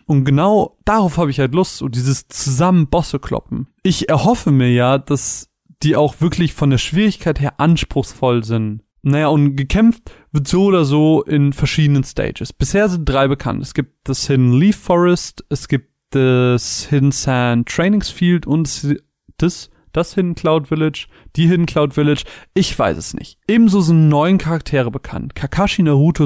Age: 30-49